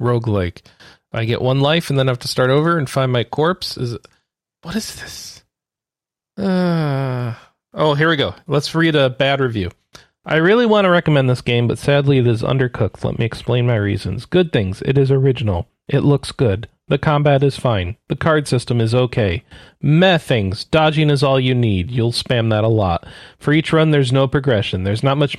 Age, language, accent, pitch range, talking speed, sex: 40-59, English, American, 120-155 Hz, 200 wpm, male